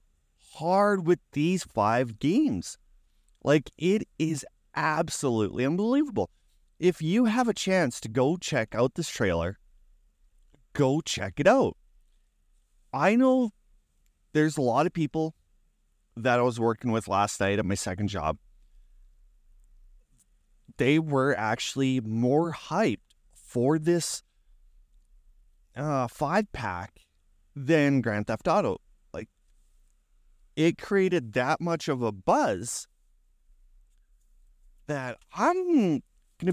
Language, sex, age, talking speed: English, male, 30-49, 110 wpm